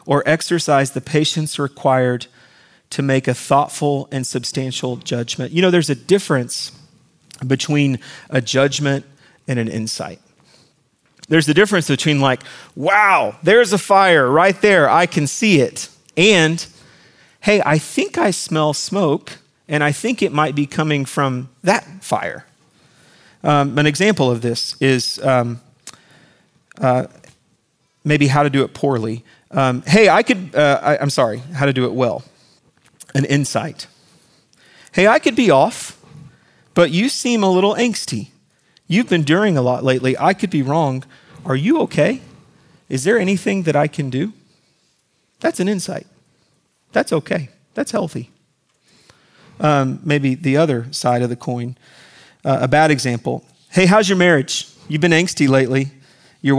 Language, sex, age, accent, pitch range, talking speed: English, male, 40-59, American, 130-170 Hz, 150 wpm